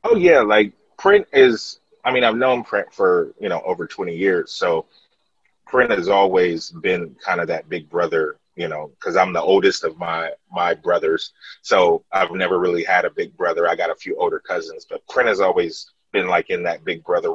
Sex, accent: male, American